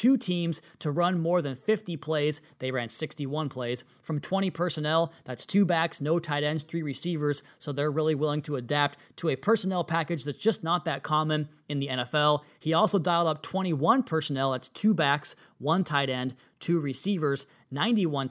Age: 20-39